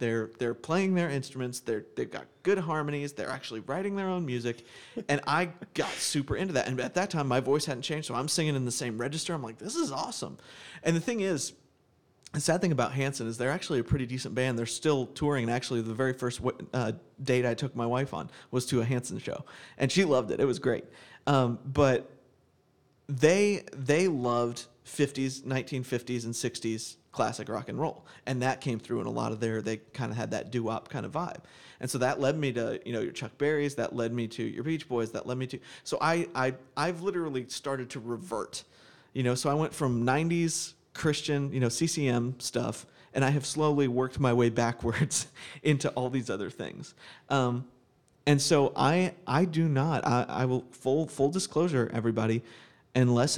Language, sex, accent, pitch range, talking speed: English, male, American, 120-150 Hz, 210 wpm